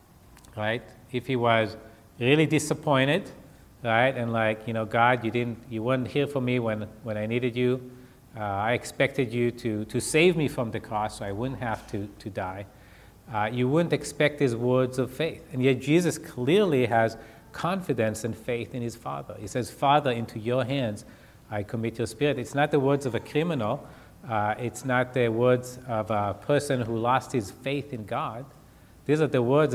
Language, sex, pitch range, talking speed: English, male, 110-145 Hz, 195 wpm